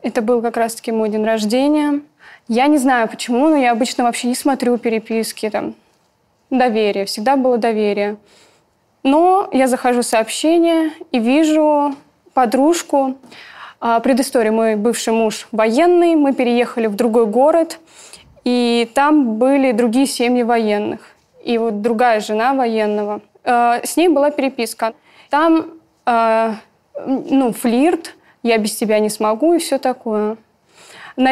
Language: Russian